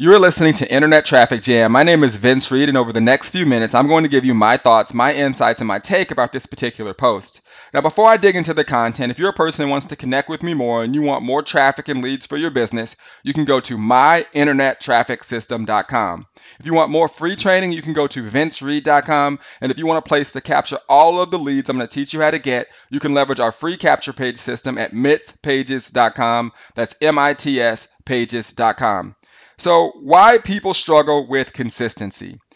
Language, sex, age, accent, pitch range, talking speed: English, male, 30-49, American, 125-160 Hz, 215 wpm